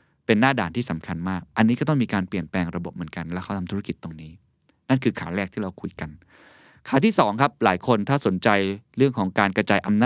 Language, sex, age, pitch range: Thai, male, 20-39, 90-120 Hz